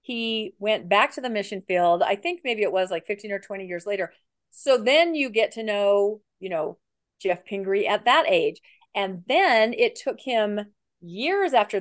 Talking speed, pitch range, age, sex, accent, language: 195 wpm, 200-260 Hz, 40-59, female, American, English